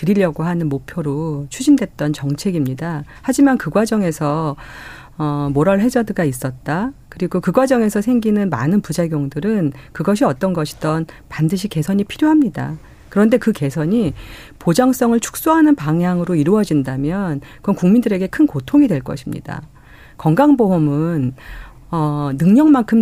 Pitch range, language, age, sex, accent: 145-230 Hz, Korean, 40-59, female, native